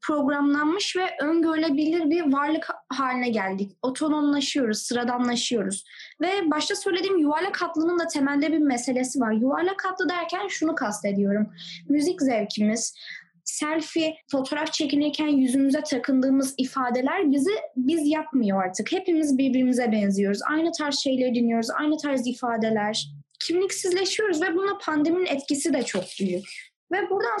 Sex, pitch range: female, 255-350 Hz